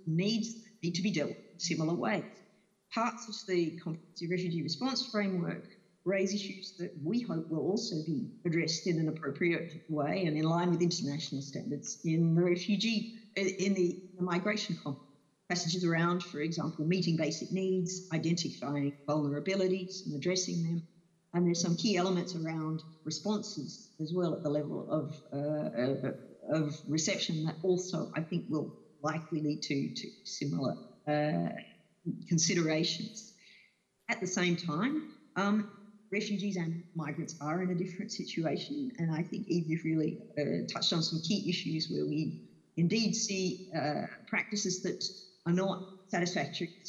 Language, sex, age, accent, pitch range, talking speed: English, female, 50-69, Australian, 155-190 Hz, 150 wpm